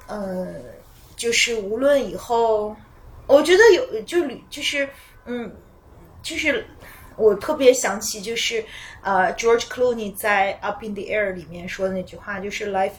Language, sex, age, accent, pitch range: Chinese, female, 20-39, native, 185-220 Hz